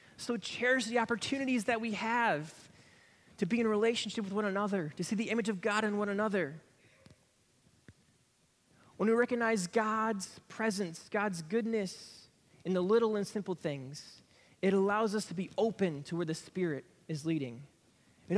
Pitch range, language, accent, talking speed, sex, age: 160-220 Hz, English, American, 160 wpm, male, 20-39